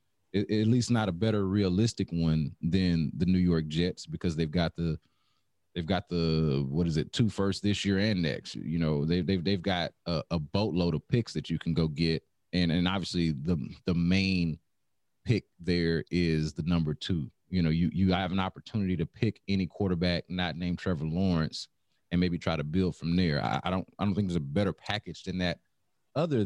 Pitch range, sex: 85-100 Hz, male